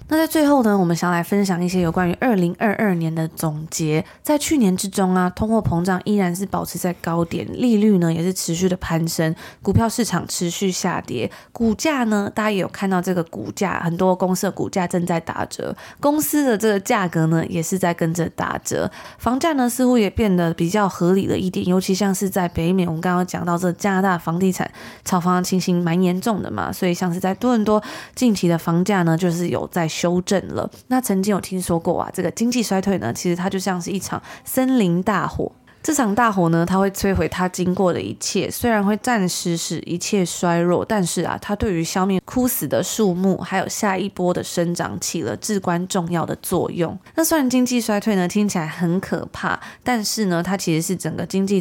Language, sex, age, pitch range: Chinese, female, 20-39, 175-210 Hz